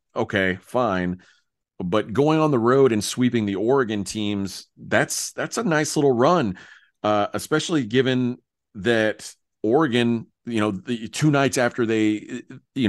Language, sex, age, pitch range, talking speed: English, male, 40-59, 95-120 Hz, 130 wpm